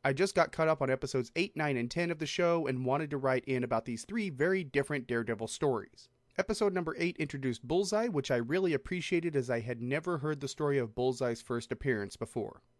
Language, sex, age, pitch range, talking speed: English, male, 30-49, 125-175 Hz, 220 wpm